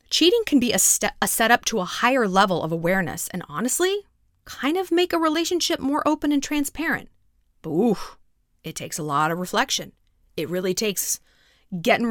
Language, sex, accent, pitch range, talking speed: English, female, American, 205-300 Hz, 180 wpm